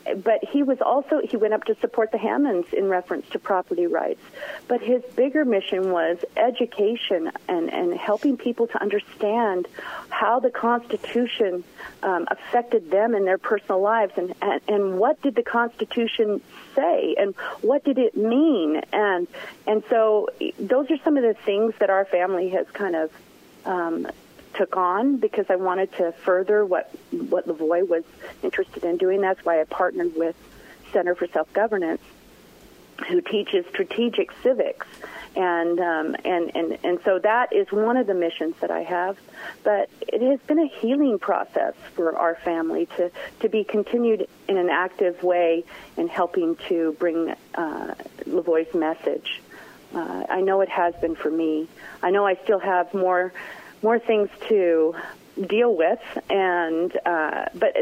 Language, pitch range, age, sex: English, 180-250 Hz, 40-59, female